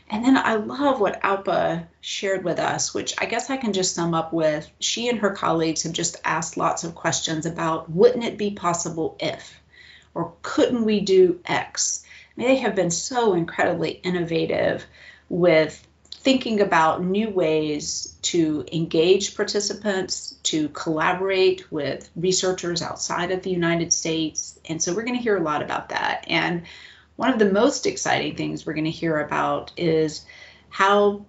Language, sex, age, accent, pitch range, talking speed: English, female, 30-49, American, 165-220 Hz, 165 wpm